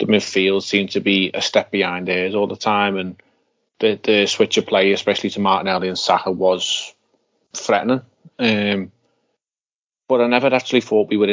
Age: 30-49